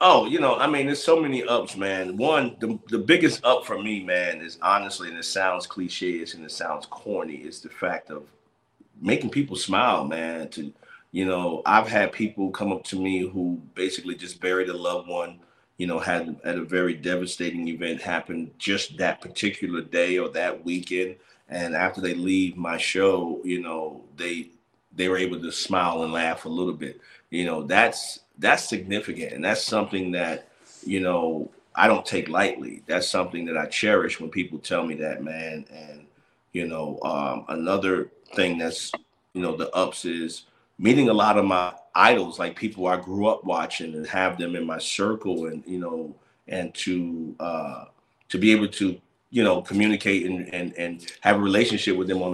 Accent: American